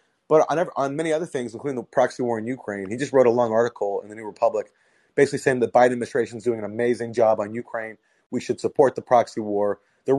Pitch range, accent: 100-135 Hz, American